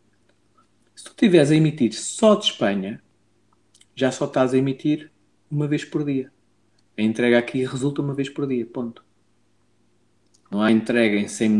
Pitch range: 115-165 Hz